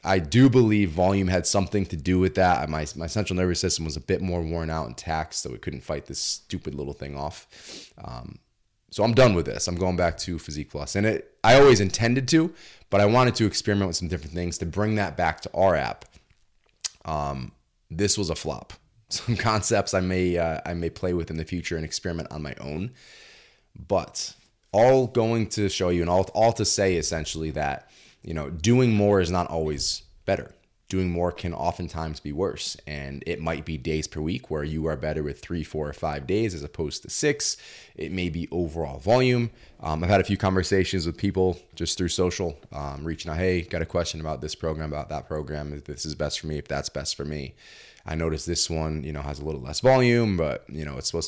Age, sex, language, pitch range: 20-39, male, English, 80-100 Hz